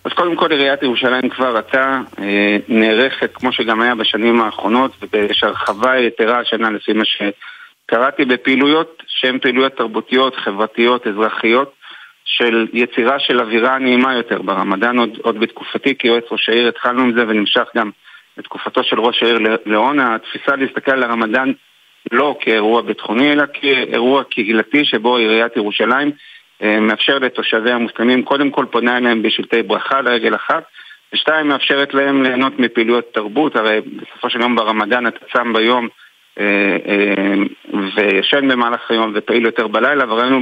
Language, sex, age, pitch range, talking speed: Hebrew, male, 50-69, 110-130 Hz, 135 wpm